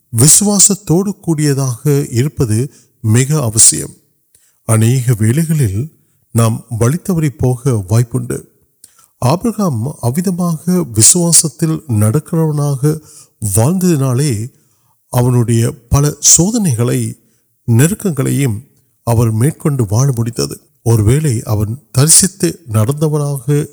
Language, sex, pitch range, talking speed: Urdu, male, 115-155 Hz, 40 wpm